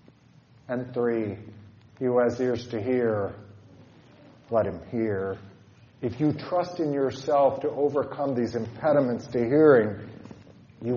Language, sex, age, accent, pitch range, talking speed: English, male, 50-69, American, 130-175 Hz, 125 wpm